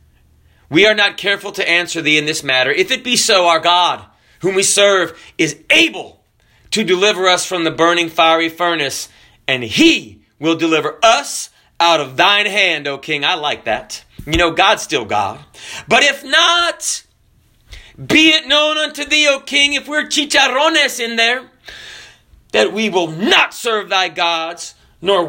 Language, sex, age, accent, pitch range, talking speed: English, male, 30-49, American, 165-275 Hz, 170 wpm